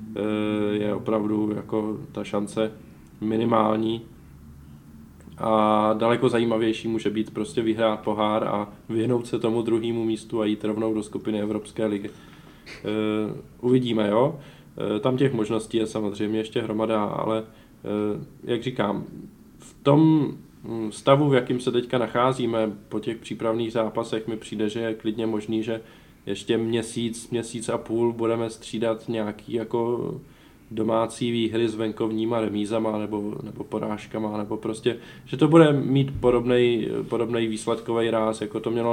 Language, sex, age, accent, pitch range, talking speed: Czech, male, 20-39, native, 105-115 Hz, 135 wpm